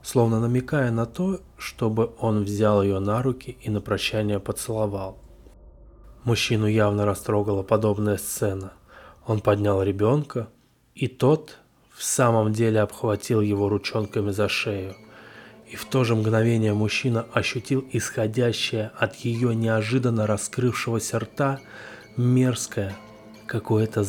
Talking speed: 115 wpm